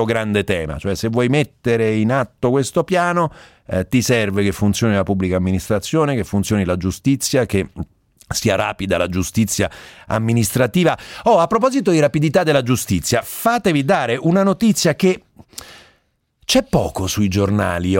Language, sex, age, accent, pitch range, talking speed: Italian, male, 40-59, native, 95-150 Hz, 145 wpm